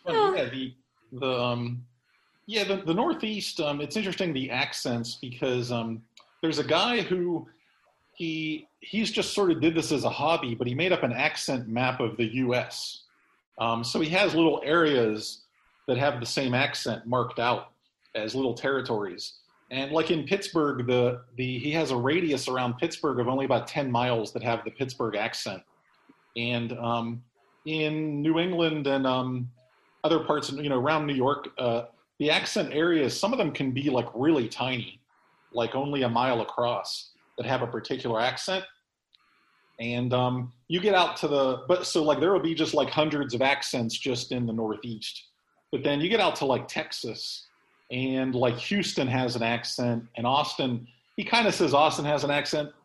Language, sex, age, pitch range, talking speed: English, male, 40-59, 120-155 Hz, 185 wpm